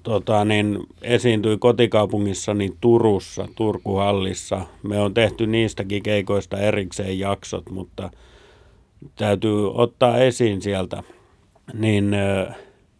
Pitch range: 95-120 Hz